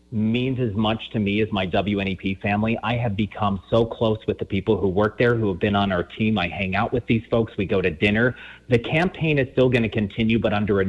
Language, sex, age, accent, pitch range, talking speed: English, male, 30-49, American, 105-120 Hz, 255 wpm